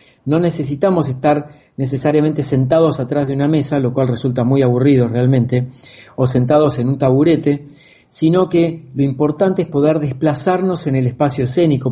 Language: Spanish